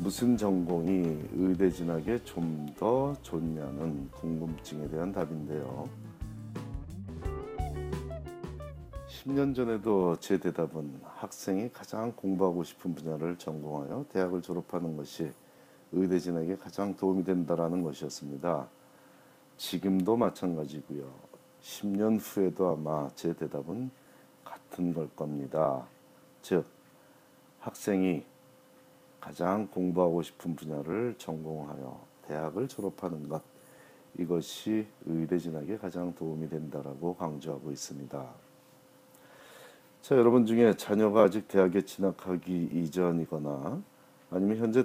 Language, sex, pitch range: Korean, male, 80-95 Hz